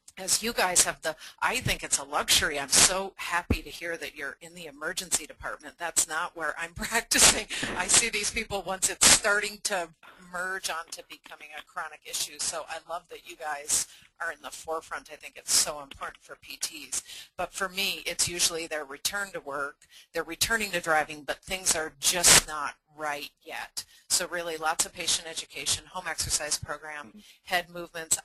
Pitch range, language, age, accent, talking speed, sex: 160-180 Hz, English, 40-59, American, 185 wpm, female